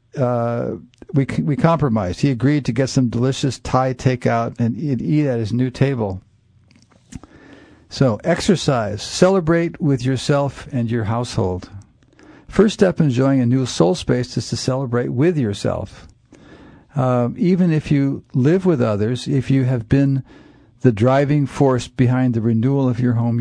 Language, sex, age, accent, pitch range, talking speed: English, male, 50-69, American, 120-145 Hz, 150 wpm